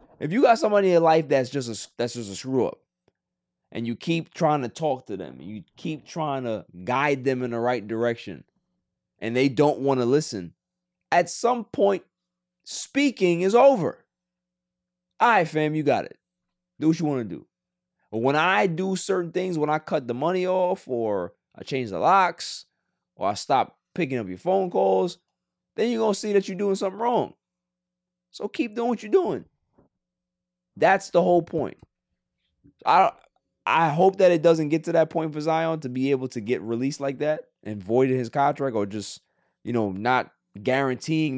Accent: American